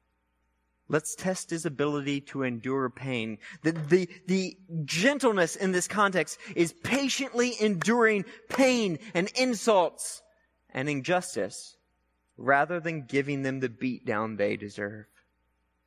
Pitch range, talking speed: 110-170 Hz, 115 wpm